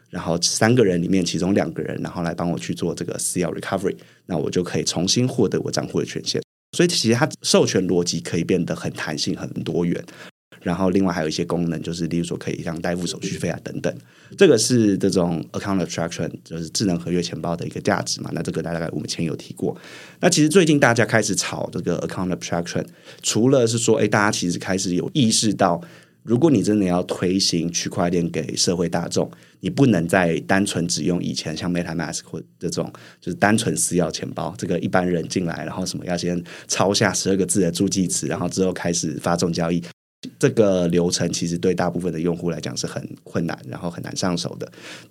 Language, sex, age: Chinese, male, 20-39